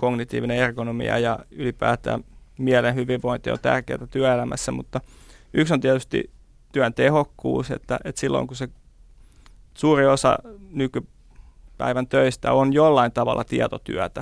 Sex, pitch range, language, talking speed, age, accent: male, 120-130 Hz, Finnish, 120 wpm, 30-49, native